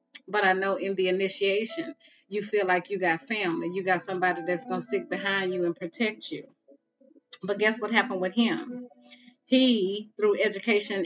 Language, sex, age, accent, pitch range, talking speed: English, female, 30-49, American, 195-255 Hz, 180 wpm